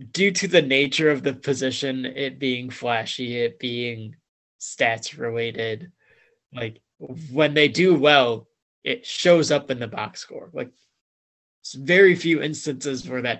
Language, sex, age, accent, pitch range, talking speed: English, male, 20-39, American, 120-155 Hz, 145 wpm